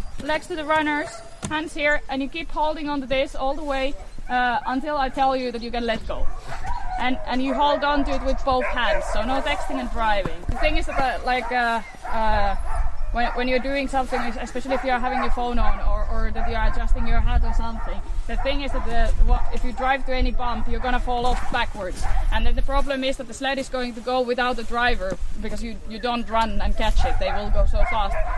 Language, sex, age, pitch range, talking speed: German, female, 20-39, 225-275 Hz, 245 wpm